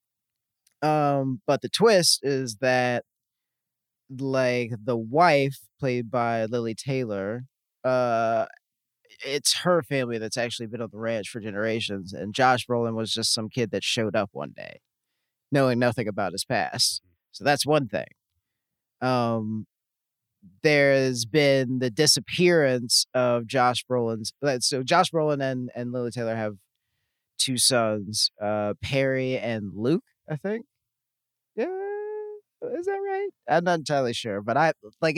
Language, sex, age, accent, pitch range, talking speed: English, male, 30-49, American, 115-140 Hz, 135 wpm